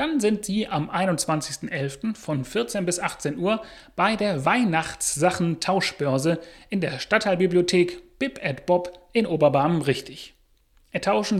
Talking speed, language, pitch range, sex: 110 wpm, German, 145-200 Hz, male